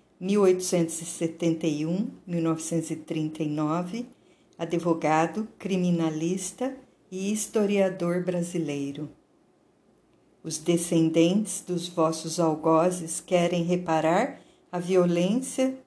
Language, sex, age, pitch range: Portuguese, female, 50-69, 165-190 Hz